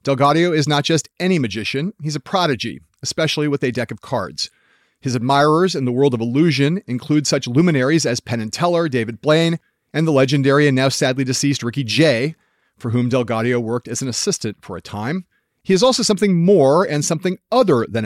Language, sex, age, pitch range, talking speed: English, male, 40-59, 130-175 Hz, 195 wpm